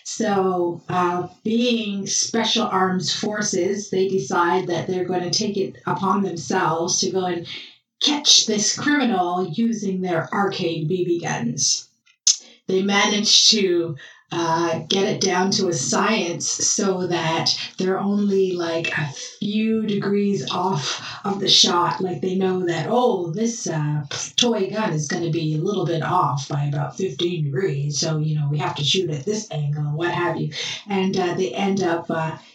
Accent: American